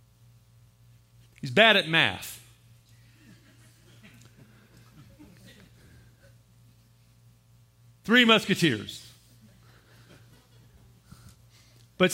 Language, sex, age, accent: English, male, 40-59, American